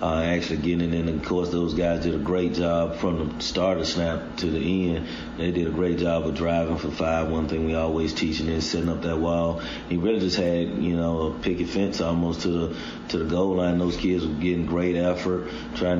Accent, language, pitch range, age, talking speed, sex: American, English, 80-90 Hz, 30-49, 235 wpm, male